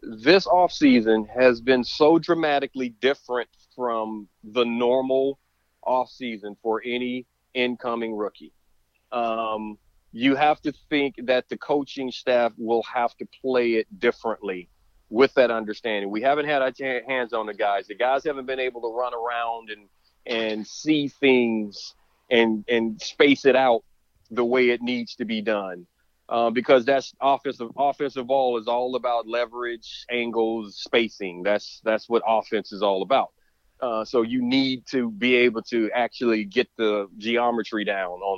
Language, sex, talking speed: English, male, 155 wpm